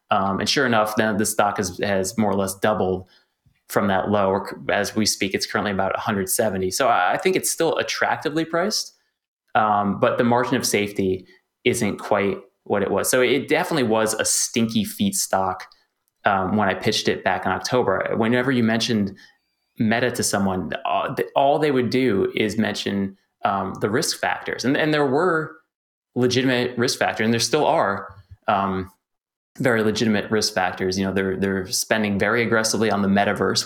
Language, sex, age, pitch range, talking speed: English, male, 20-39, 95-115 Hz, 180 wpm